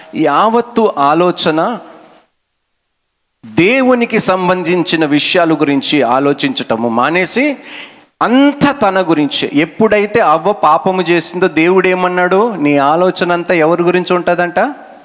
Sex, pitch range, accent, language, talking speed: male, 135-200 Hz, native, Telugu, 90 wpm